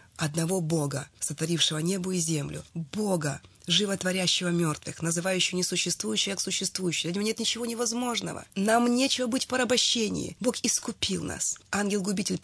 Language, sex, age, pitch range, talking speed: Russian, female, 20-39, 155-200 Hz, 130 wpm